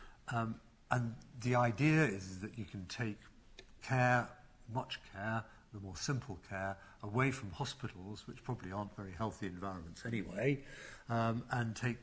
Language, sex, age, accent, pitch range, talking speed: English, male, 50-69, British, 100-125 Hz, 150 wpm